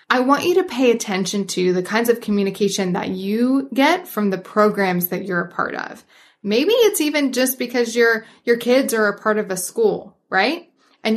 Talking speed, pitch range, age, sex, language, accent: 205 wpm, 195-265 Hz, 20-39, female, English, American